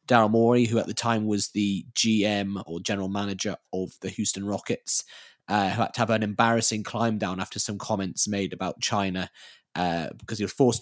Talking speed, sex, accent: 200 wpm, male, British